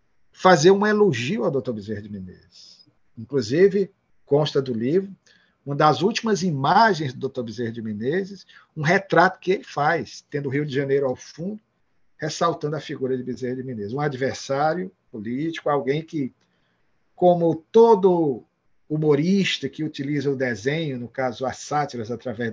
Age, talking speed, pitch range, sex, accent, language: 50-69, 150 wpm, 130-175 Hz, male, Brazilian, Portuguese